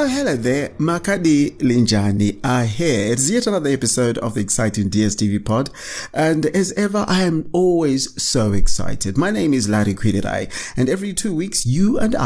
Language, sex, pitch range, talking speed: English, male, 105-160 Hz, 160 wpm